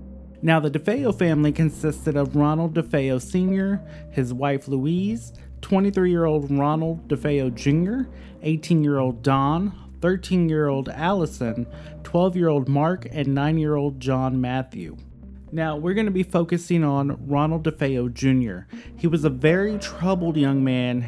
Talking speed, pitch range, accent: 120 wpm, 125-160 Hz, American